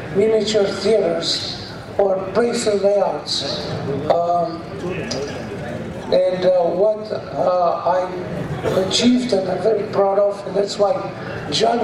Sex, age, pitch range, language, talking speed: male, 60-79, 185-215 Hz, English, 105 wpm